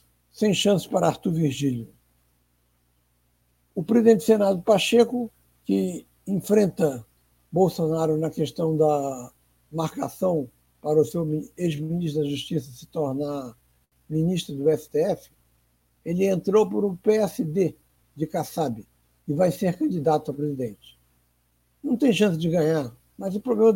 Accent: Brazilian